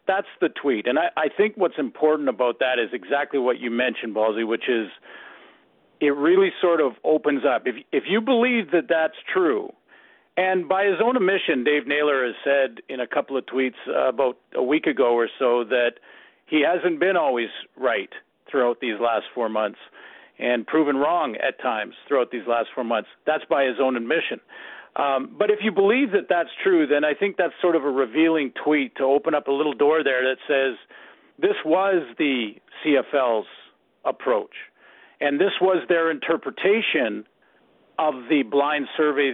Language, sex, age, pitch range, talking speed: English, male, 50-69, 135-205 Hz, 180 wpm